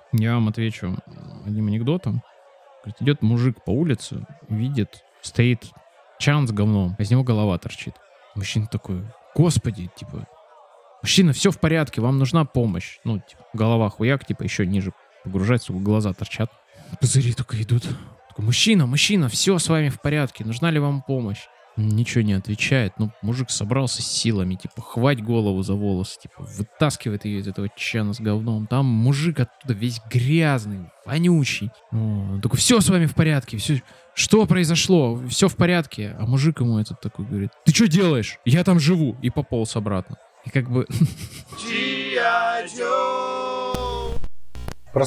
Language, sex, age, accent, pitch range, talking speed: Russian, male, 20-39, native, 105-150 Hz, 150 wpm